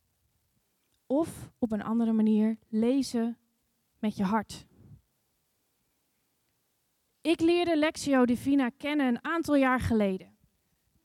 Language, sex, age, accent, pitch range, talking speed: Dutch, female, 20-39, Dutch, 230-290 Hz, 100 wpm